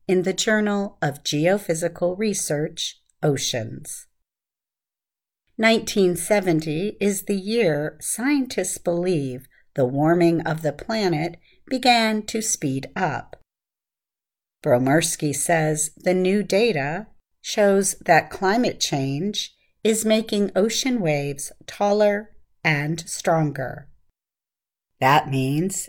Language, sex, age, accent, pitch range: Chinese, female, 50-69, American, 150-205 Hz